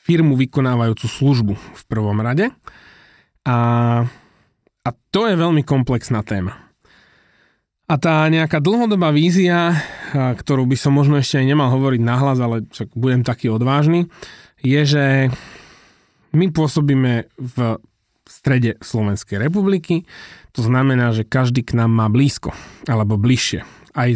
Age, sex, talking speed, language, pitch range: 30-49, male, 125 wpm, Slovak, 115-145 Hz